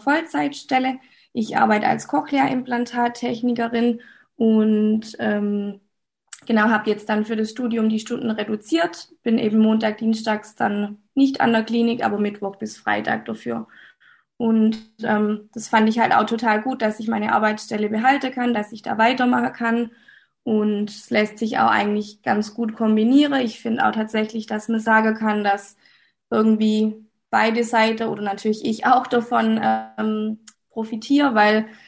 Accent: German